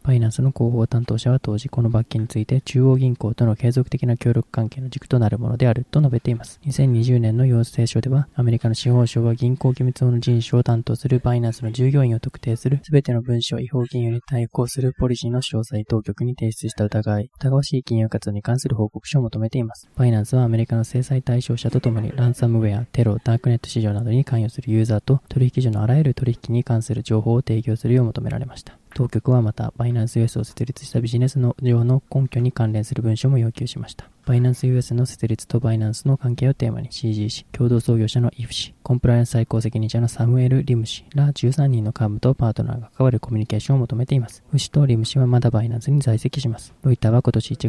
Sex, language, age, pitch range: male, Japanese, 20-39, 115-130 Hz